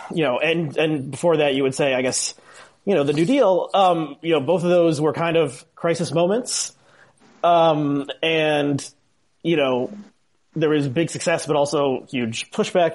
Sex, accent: male, American